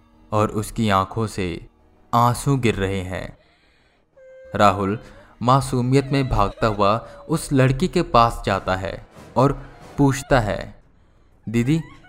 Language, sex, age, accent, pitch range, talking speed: Hindi, male, 20-39, native, 100-135 Hz, 115 wpm